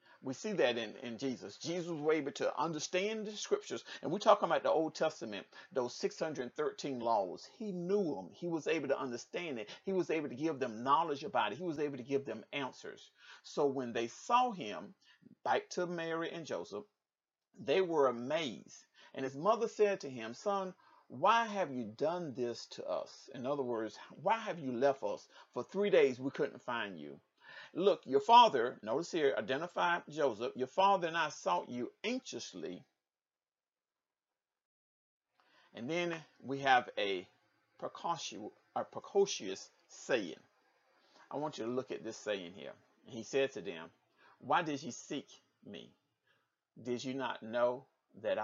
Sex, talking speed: male, 170 wpm